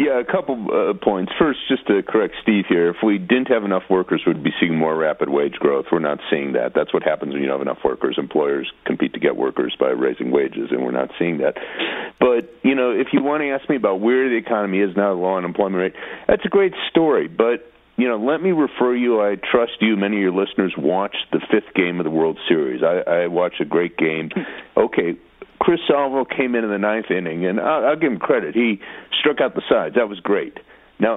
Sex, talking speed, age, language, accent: male, 235 wpm, 40-59, English, American